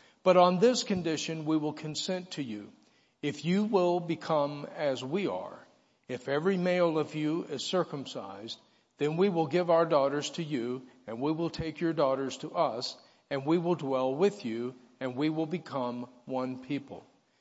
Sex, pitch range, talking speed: male, 135-170 Hz, 175 wpm